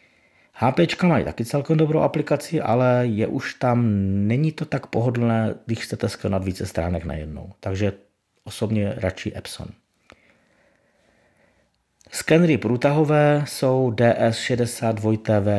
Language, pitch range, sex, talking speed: Czech, 95-120 Hz, male, 110 wpm